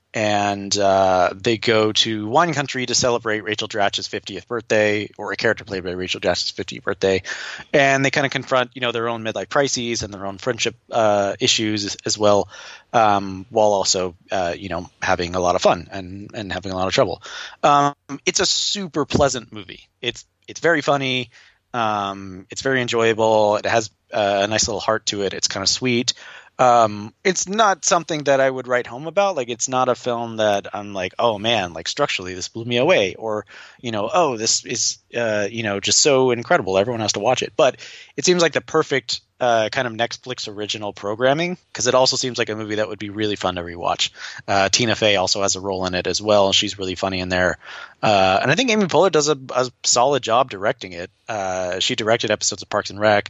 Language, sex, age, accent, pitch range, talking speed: English, male, 30-49, American, 100-125 Hz, 215 wpm